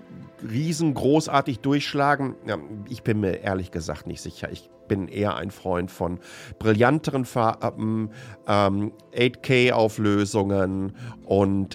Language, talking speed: German, 100 wpm